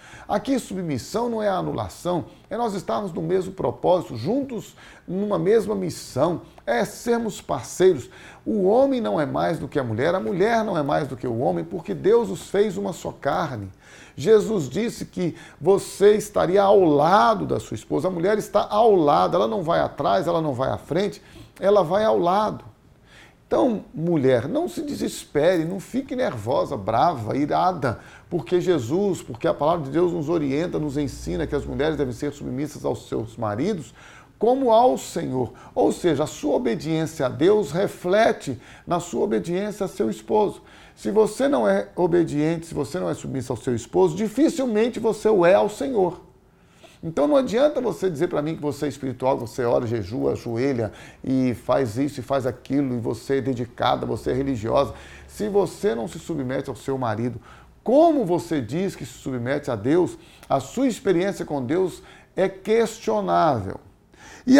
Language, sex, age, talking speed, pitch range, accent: Portuguese, male, 40-59, 175 wpm, 140-210 Hz, Brazilian